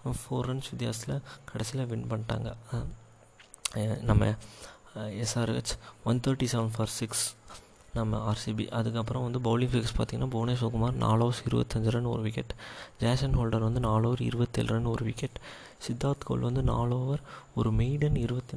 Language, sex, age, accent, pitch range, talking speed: Tamil, male, 20-39, native, 115-125 Hz, 130 wpm